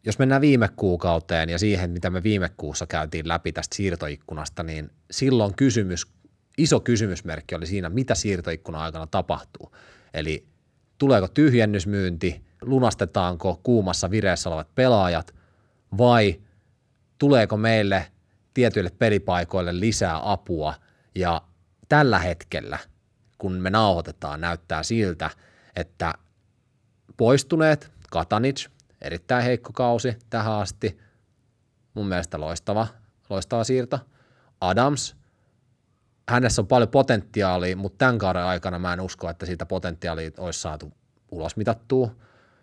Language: Finnish